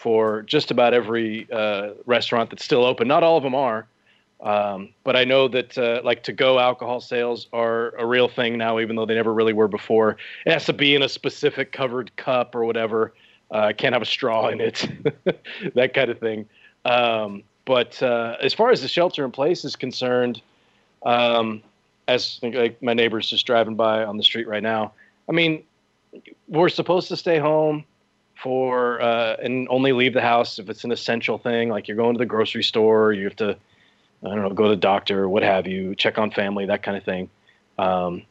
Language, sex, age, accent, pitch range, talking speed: English, male, 30-49, American, 110-135 Hz, 205 wpm